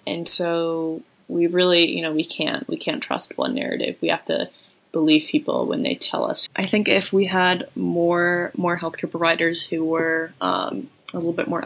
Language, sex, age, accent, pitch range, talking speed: English, female, 20-39, American, 155-185 Hz, 195 wpm